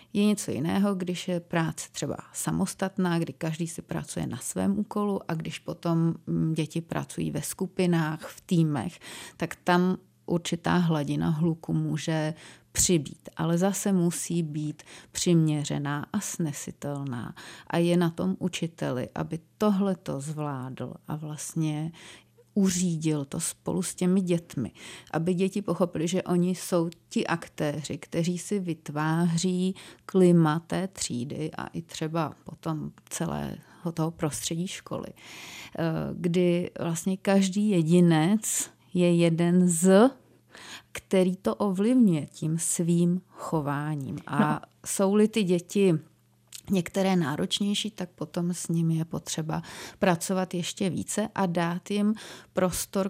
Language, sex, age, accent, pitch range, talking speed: Czech, female, 30-49, native, 160-185 Hz, 120 wpm